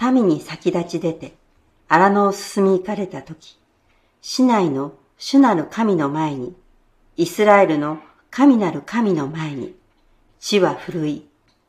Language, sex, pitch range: Japanese, female, 145-200 Hz